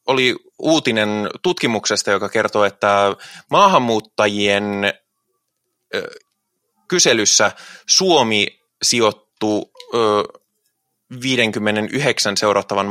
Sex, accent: male, native